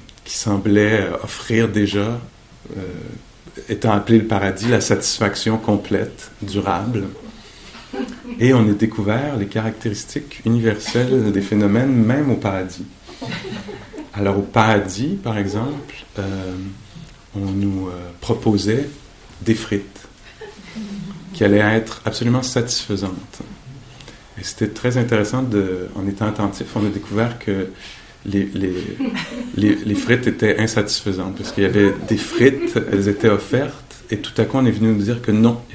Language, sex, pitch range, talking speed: English, male, 100-120 Hz, 140 wpm